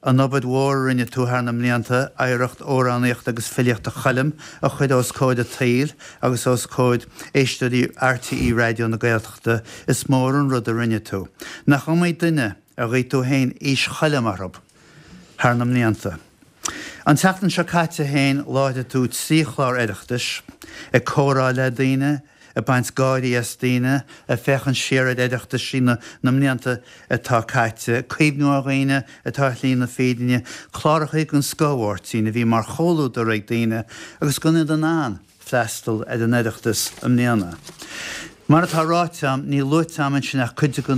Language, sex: English, male